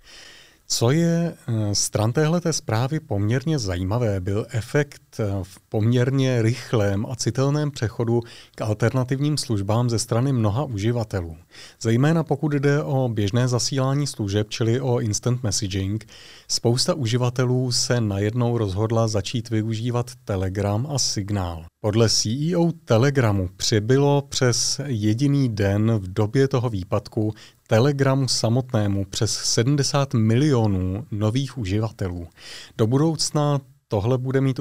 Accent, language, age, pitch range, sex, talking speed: native, Czech, 30-49, 105-130 Hz, male, 115 wpm